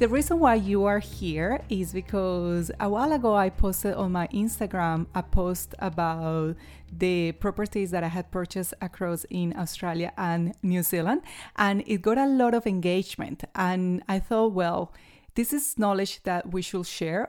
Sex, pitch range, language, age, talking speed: female, 175-210 Hz, Spanish, 30-49, 170 wpm